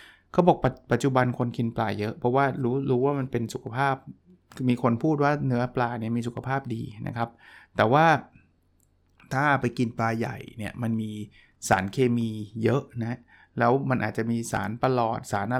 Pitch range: 115-140 Hz